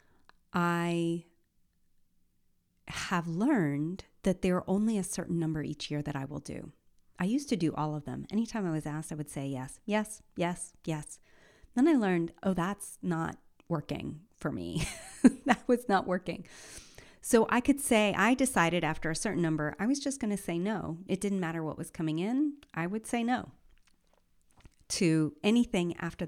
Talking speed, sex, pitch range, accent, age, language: 180 wpm, female, 155-195 Hz, American, 30-49, English